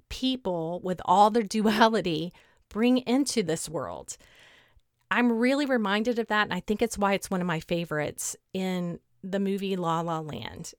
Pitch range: 180-235 Hz